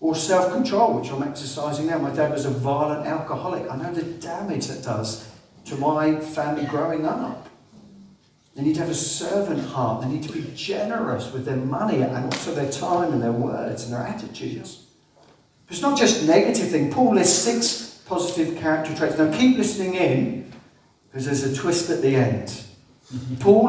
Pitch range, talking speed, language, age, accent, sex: 120-160 Hz, 180 wpm, English, 50-69, British, male